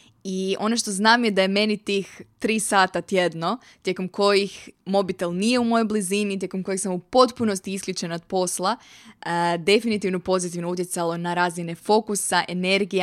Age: 20-39